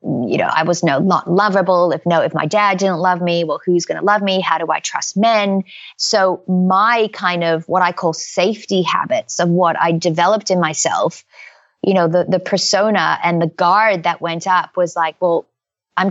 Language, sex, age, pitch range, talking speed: English, female, 30-49, 175-200 Hz, 210 wpm